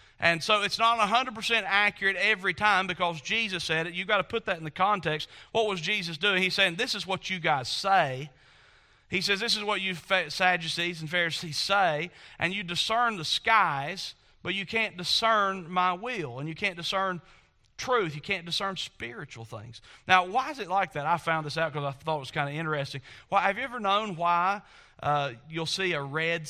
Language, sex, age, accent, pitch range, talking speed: English, male, 40-59, American, 145-195 Hz, 210 wpm